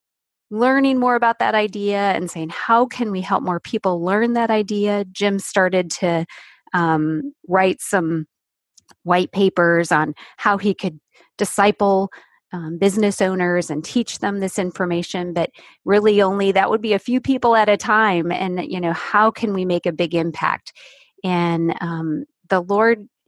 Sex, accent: female, American